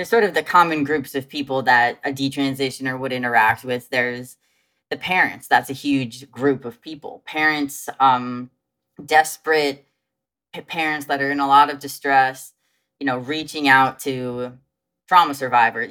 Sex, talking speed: female, 150 wpm